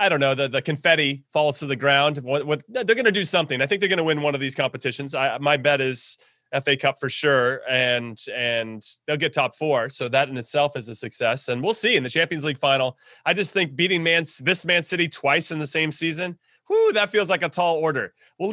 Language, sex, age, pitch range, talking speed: English, male, 30-49, 135-175 Hz, 250 wpm